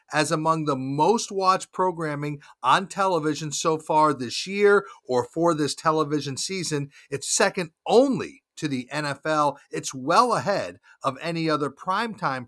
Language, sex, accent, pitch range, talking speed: English, male, American, 145-190 Hz, 145 wpm